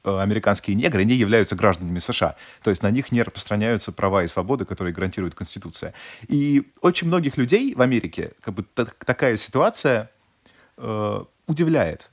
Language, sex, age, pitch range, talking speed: Russian, male, 30-49, 90-115 Hz, 155 wpm